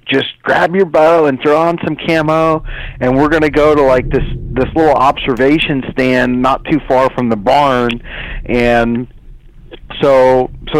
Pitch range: 120-155 Hz